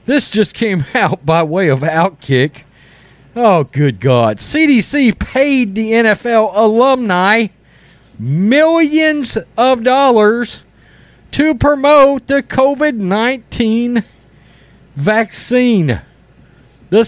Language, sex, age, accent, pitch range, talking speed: English, male, 40-59, American, 185-255 Hz, 90 wpm